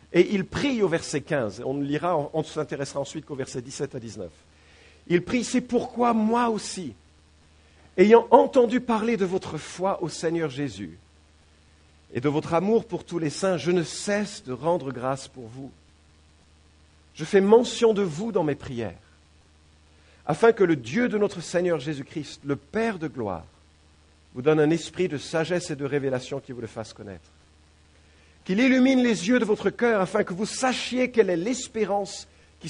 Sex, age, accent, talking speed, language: male, 50-69, French, 180 wpm, English